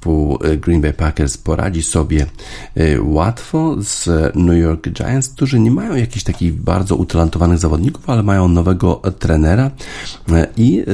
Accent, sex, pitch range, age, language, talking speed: native, male, 75-90 Hz, 50-69, Polish, 125 wpm